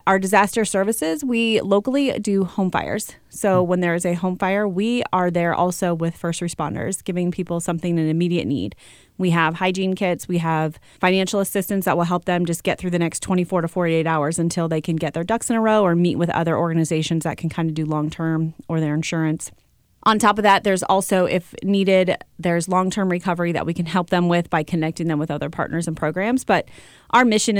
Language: English